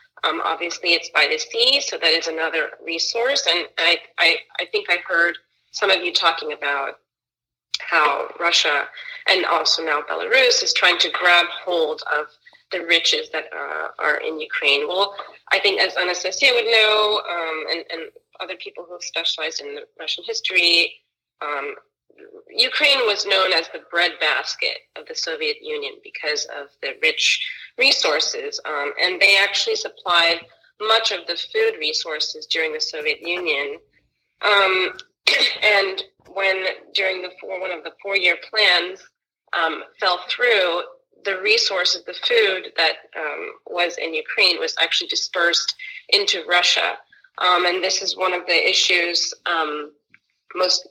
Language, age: English, 30-49